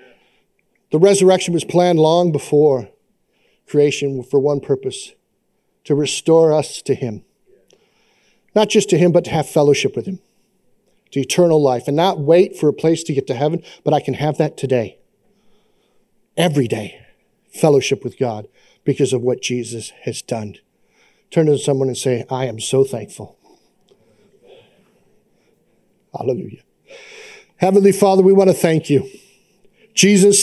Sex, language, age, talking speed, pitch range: male, English, 50-69, 145 wpm, 150-215 Hz